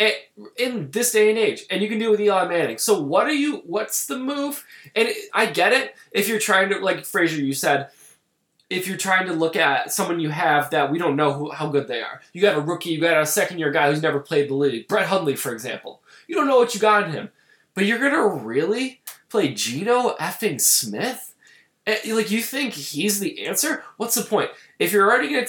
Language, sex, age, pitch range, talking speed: English, male, 20-39, 160-215 Hz, 230 wpm